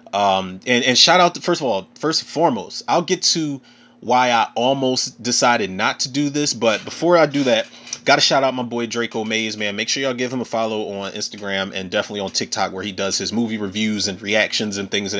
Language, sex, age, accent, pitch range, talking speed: English, male, 30-49, American, 110-155 Hz, 235 wpm